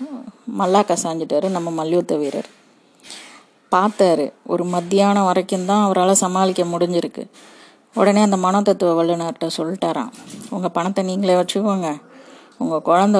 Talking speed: 110 wpm